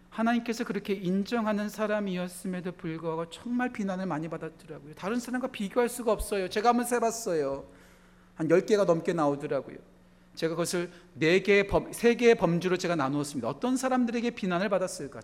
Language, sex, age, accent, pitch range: Korean, male, 40-59, native, 175-235 Hz